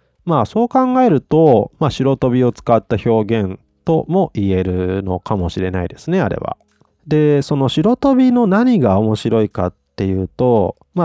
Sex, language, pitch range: male, Japanese, 95-155 Hz